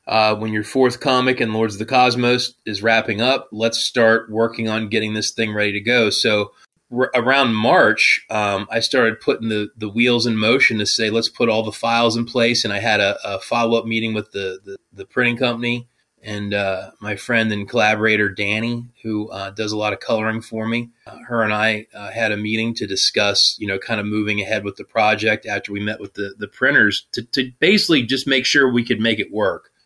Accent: American